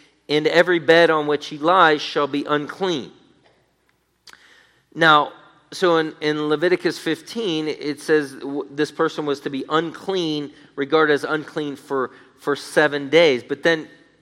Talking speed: 140 wpm